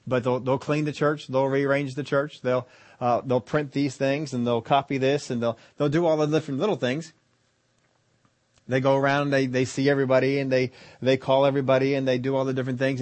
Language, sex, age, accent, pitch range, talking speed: English, male, 40-59, American, 125-145 Hz, 220 wpm